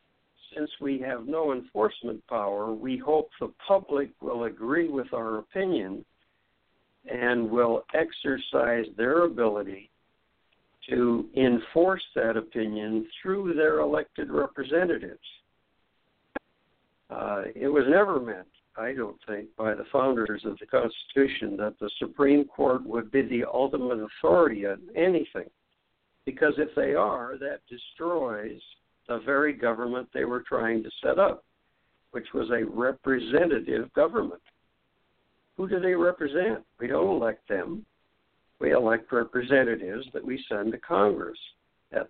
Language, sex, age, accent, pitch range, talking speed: English, male, 60-79, American, 110-145 Hz, 130 wpm